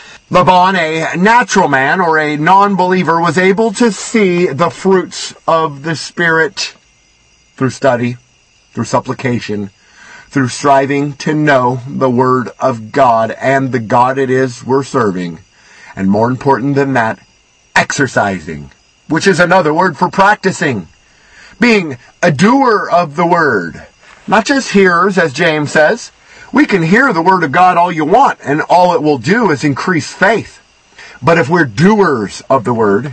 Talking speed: 150 wpm